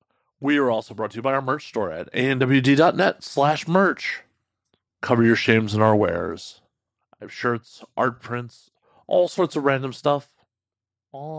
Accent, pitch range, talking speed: American, 110-135 Hz, 165 wpm